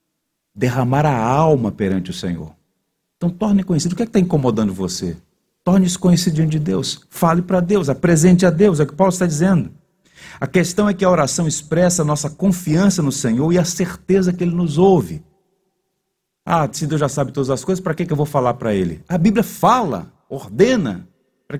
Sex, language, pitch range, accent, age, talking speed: male, Portuguese, 125-185 Hz, Brazilian, 40-59, 195 wpm